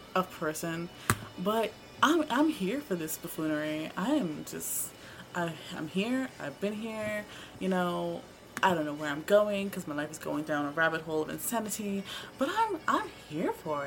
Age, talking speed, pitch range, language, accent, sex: 20-39, 180 wpm, 180-255 Hz, English, American, female